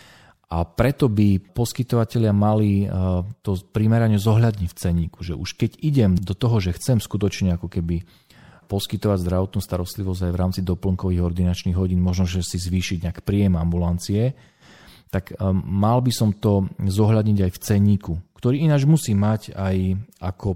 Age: 40-59